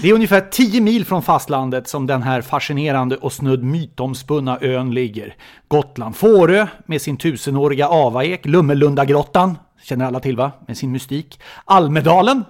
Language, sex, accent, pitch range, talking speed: English, male, Swedish, 130-180 Hz, 150 wpm